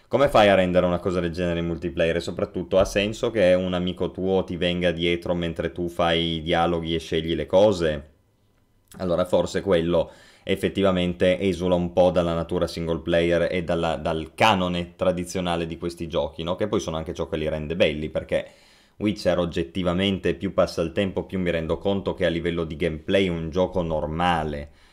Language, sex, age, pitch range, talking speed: Italian, male, 20-39, 85-100 Hz, 190 wpm